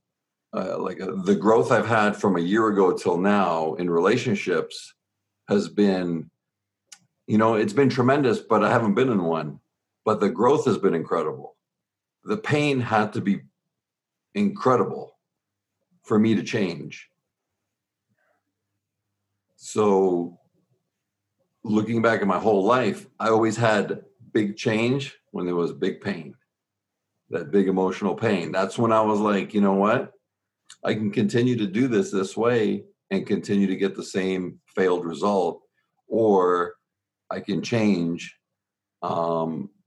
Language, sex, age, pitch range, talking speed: English, male, 50-69, 90-115 Hz, 140 wpm